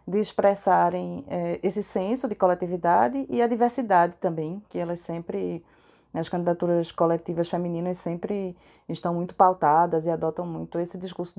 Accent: Brazilian